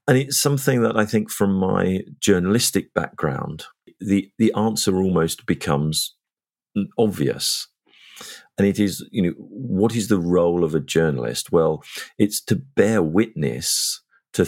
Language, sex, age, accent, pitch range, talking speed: English, male, 40-59, British, 80-100 Hz, 140 wpm